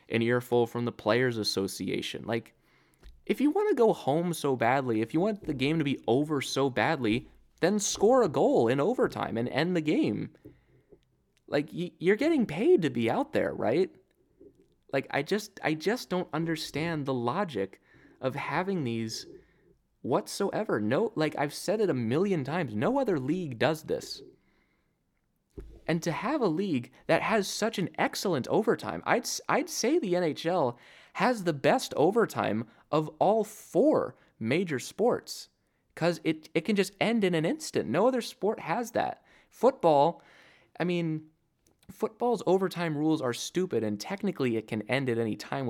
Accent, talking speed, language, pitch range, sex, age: American, 165 wpm, English, 120-185 Hz, male, 20-39